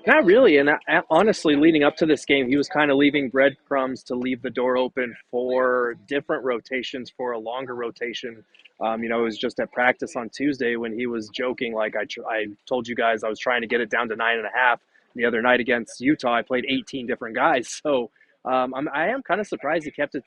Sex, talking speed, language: male, 240 wpm, English